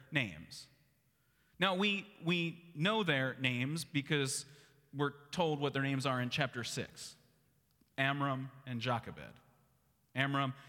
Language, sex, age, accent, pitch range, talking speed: English, male, 30-49, American, 140-180 Hz, 120 wpm